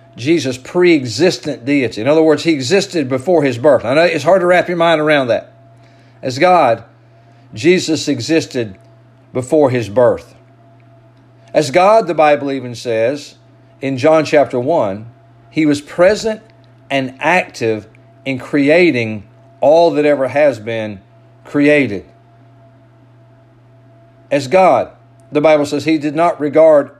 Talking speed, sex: 135 wpm, male